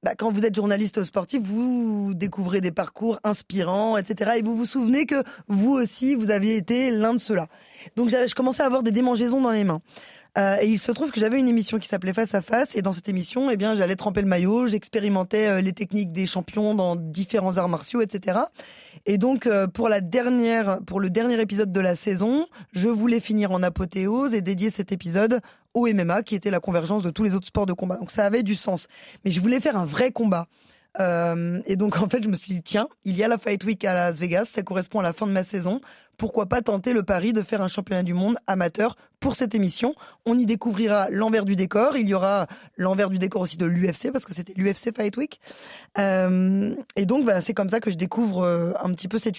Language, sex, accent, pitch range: French, female, French, 190-230 Hz